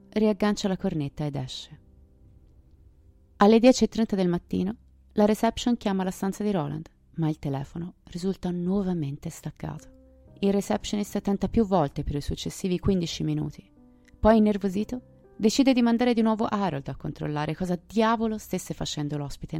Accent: native